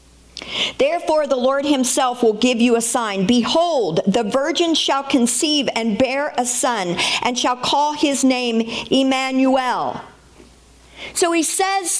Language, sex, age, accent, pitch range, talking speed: English, female, 50-69, American, 245-325 Hz, 135 wpm